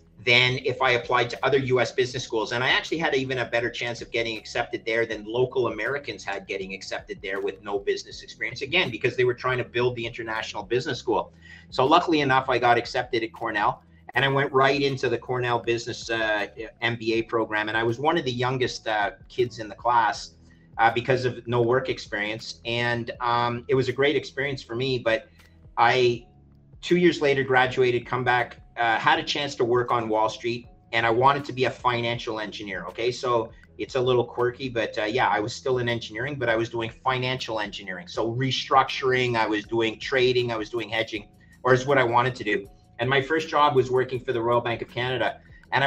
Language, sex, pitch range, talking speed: Bulgarian, male, 110-130 Hz, 215 wpm